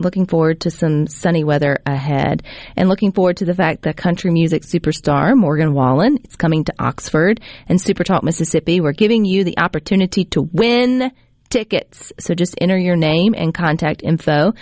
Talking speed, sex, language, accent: 175 wpm, female, English, American